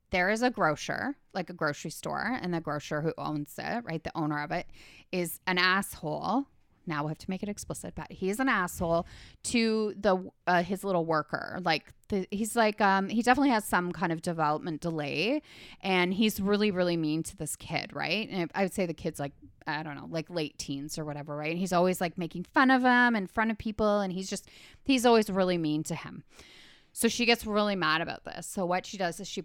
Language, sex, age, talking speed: English, female, 20-39, 230 wpm